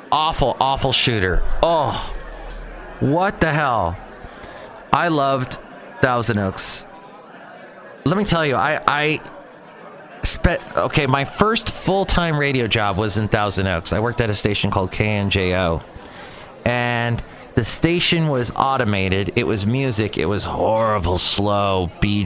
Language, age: English, 30-49